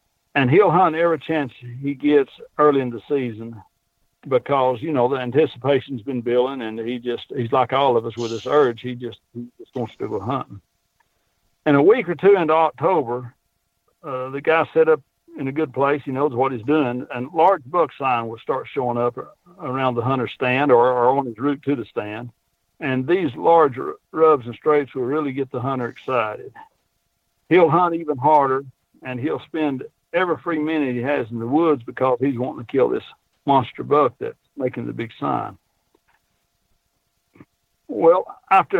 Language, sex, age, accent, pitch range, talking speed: English, male, 60-79, American, 120-155 Hz, 185 wpm